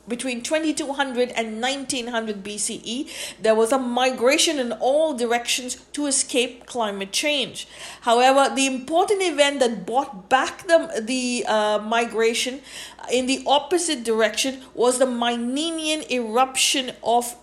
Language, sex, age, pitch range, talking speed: English, female, 50-69, 215-280 Hz, 125 wpm